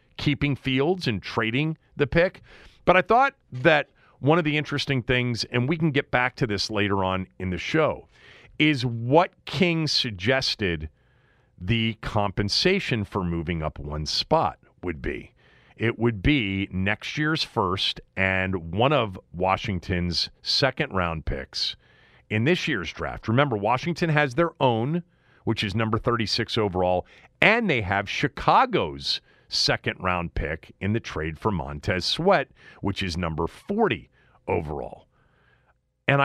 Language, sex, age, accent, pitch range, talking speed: English, male, 40-59, American, 90-130 Hz, 140 wpm